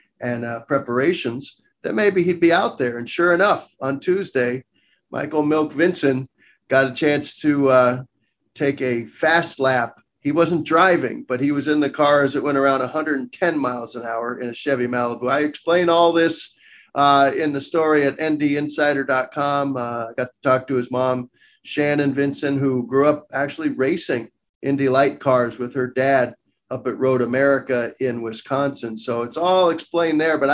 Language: English